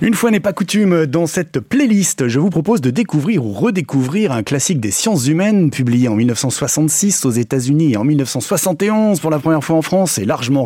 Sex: male